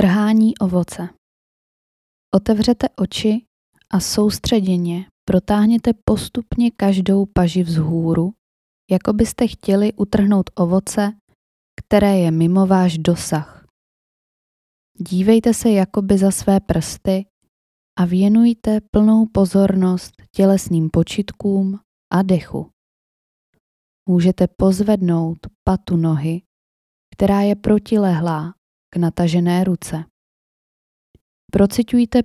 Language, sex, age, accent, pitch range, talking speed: Czech, female, 20-39, native, 170-210 Hz, 85 wpm